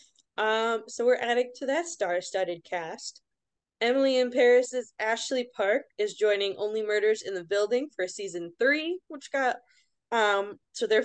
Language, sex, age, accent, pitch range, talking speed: English, female, 20-39, American, 205-270 Hz, 150 wpm